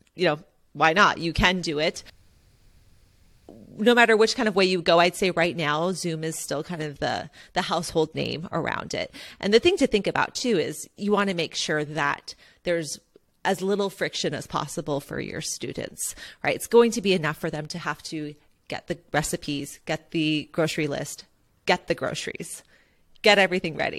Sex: female